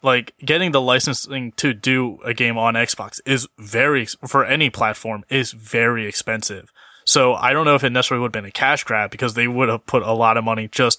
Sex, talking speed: male, 225 wpm